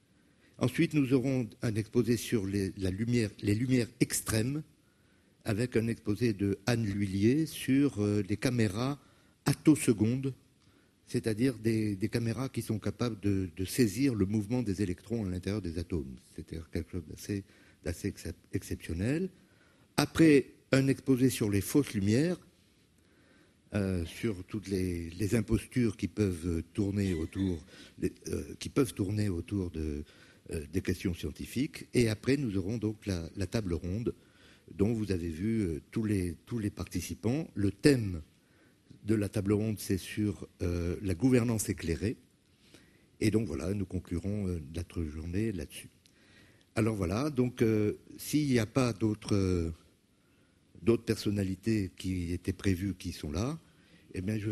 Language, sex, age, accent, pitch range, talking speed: French, male, 50-69, French, 95-115 Hz, 145 wpm